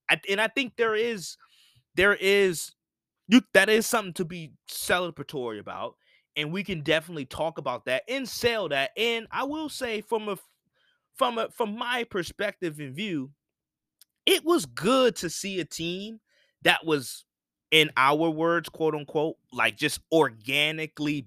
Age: 20-39